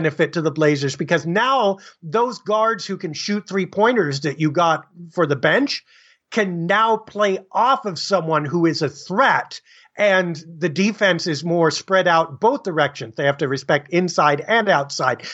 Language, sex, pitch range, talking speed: English, male, 155-200 Hz, 170 wpm